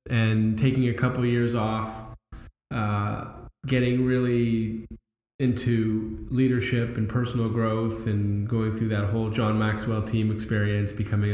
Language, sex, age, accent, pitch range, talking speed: English, male, 10-29, American, 110-125 Hz, 125 wpm